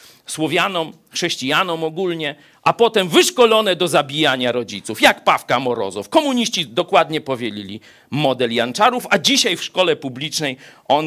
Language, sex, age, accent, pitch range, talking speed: Polish, male, 40-59, native, 130-205 Hz, 125 wpm